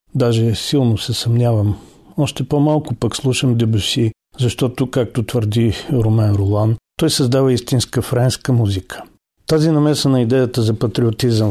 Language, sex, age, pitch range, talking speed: Bulgarian, male, 40-59, 110-120 Hz, 125 wpm